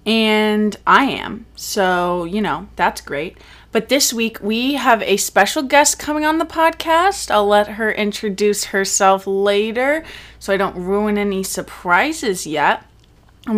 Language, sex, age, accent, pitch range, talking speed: English, female, 20-39, American, 185-240 Hz, 150 wpm